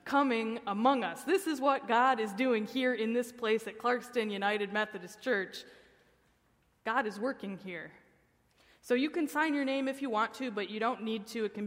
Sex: female